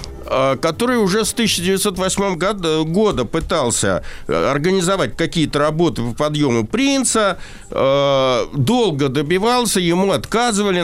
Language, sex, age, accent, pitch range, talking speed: Russian, male, 60-79, native, 140-195 Hz, 90 wpm